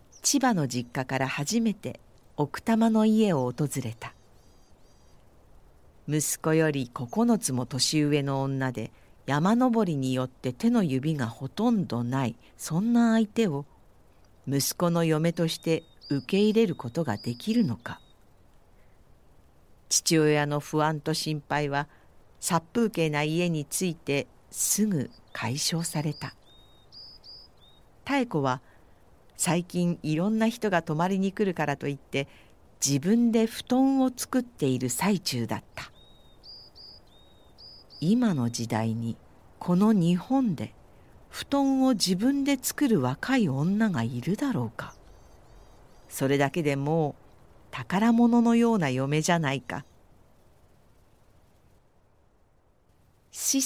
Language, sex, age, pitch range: Japanese, female, 50-69, 130-205 Hz